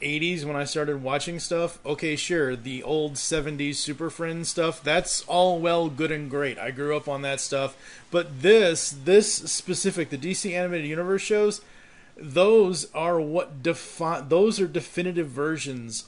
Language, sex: English, male